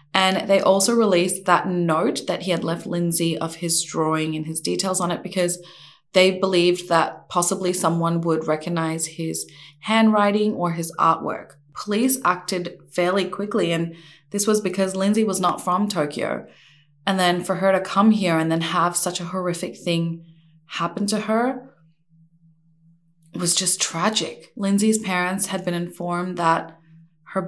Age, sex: 20-39, female